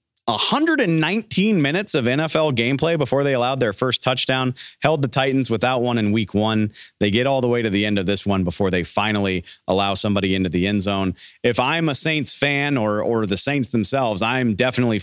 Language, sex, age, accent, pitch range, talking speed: English, male, 40-59, American, 100-130 Hz, 205 wpm